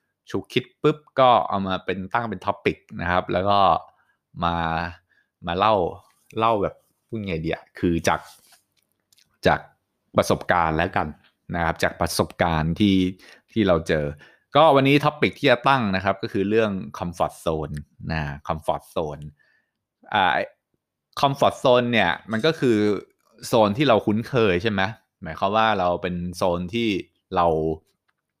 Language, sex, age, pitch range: English, male, 20-39, 85-110 Hz